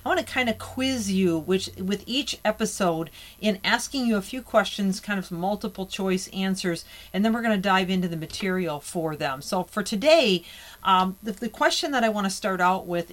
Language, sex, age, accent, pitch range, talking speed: English, female, 40-59, American, 160-215 Hz, 215 wpm